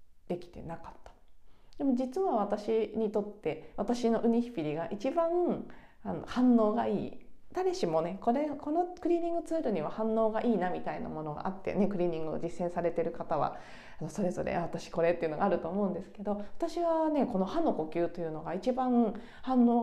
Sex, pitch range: female, 175-265 Hz